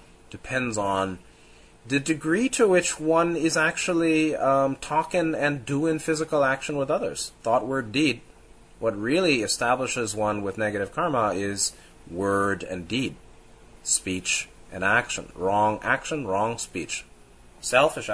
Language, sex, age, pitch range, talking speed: English, male, 30-49, 90-125 Hz, 130 wpm